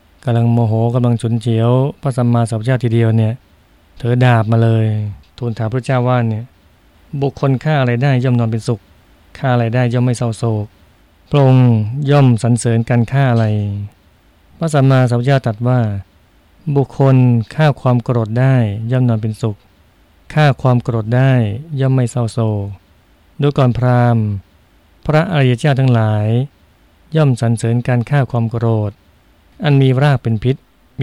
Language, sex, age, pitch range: Thai, male, 20-39, 100-125 Hz